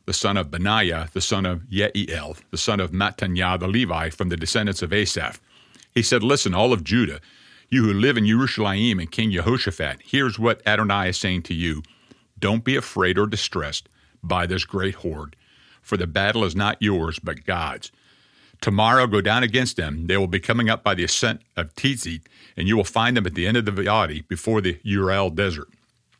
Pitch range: 95-120 Hz